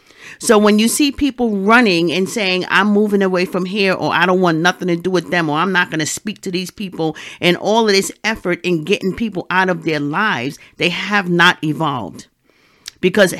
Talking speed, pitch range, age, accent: 215 wpm, 155-200 Hz, 50-69, American